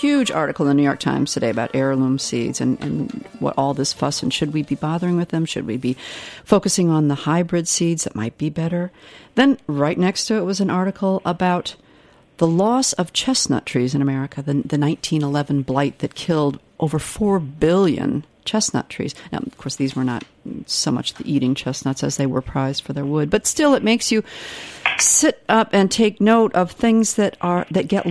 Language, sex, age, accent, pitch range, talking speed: English, female, 50-69, American, 140-185 Hz, 205 wpm